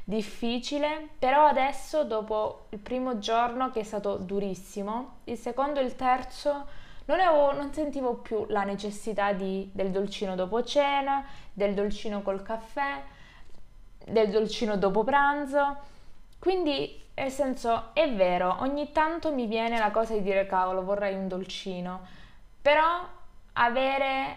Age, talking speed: 20-39, 135 wpm